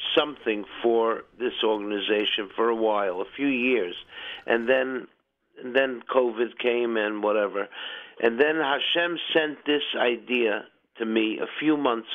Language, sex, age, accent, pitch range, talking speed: English, male, 50-69, American, 115-140 Hz, 145 wpm